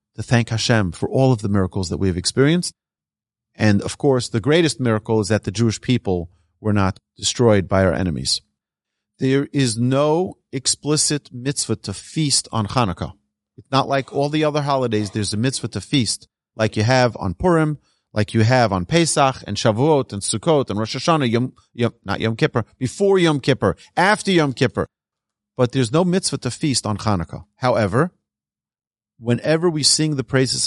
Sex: male